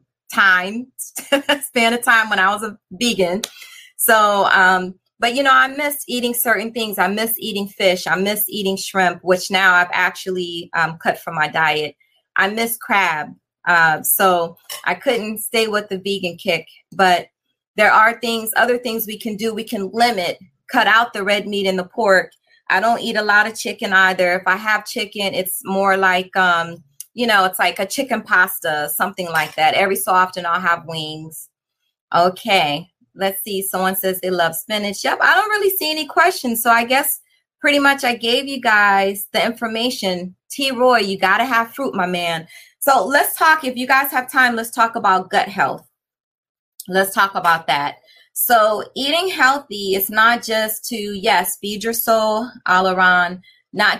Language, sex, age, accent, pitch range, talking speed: English, female, 30-49, American, 185-235 Hz, 180 wpm